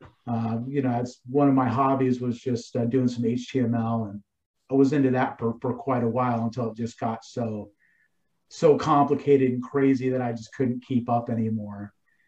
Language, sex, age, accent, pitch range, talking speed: English, male, 40-59, American, 115-135 Hz, 190 wpm